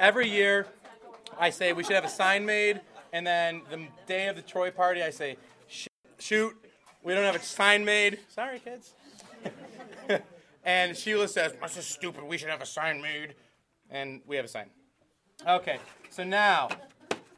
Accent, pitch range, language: American, 155-190 Hz, English